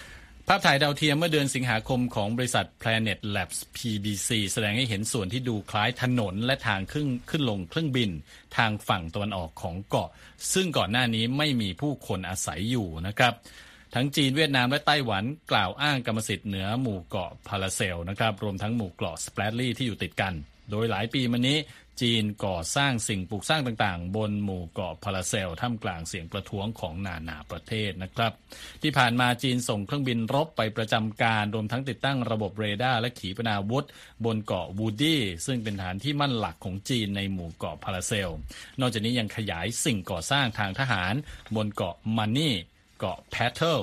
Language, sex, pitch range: Thai, male, 95-125 Hz